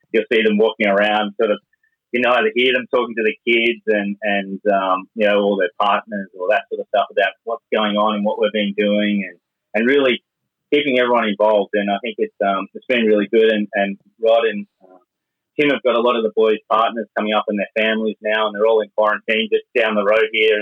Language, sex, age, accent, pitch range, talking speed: English, male, 30-49, Australian, 105-120 Hz, 240 wpm